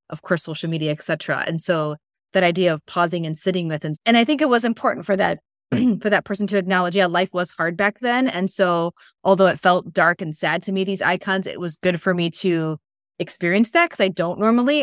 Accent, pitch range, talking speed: American, 170-205 Hz, 235 wpm